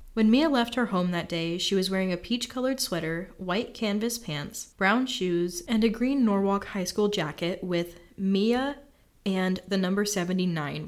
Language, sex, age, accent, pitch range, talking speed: English, female, 10-29, American, 175-220 Hz, 170 wpm